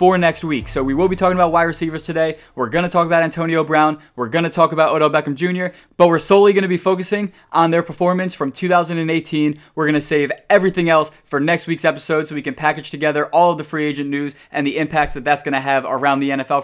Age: 20-39